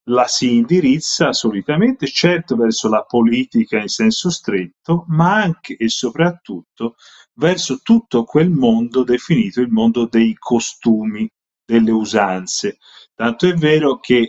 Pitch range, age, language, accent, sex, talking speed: 110-170 Hz, 40-59, Italian, native, male, 125 wpm